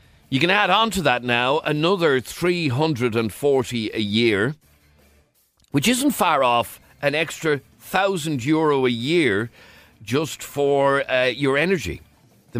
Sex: male